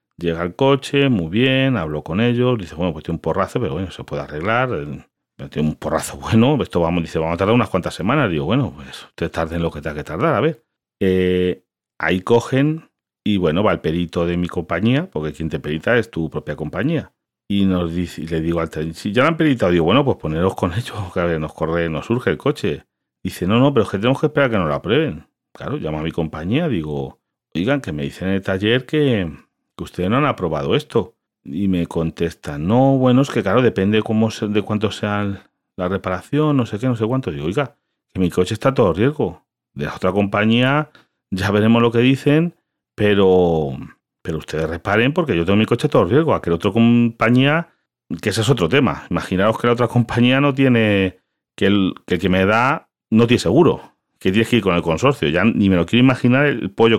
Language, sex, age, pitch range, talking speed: Spanish, male, 40-59, 85-120 Hz, 230 wpm